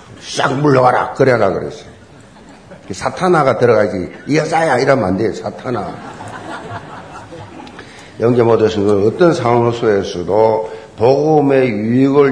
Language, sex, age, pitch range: Korean, male, 50-69, 120-160 Hz